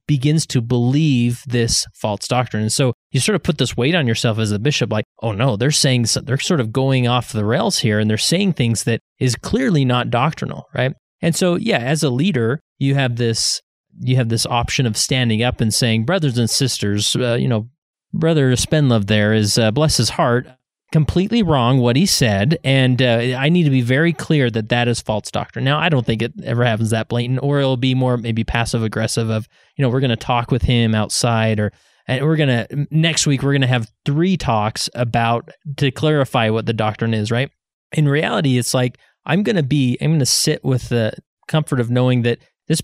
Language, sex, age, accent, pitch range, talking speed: English, male, 30-49, American, 115-150 Hz, 225 wpm